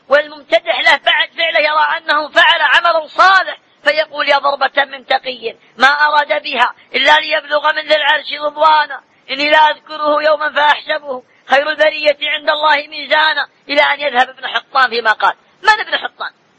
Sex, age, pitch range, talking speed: female, 20-39, 255-310 Hz, 155 wpm